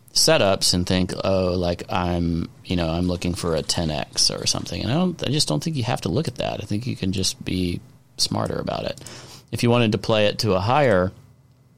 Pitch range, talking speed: 85-110 Hz, 235 wpm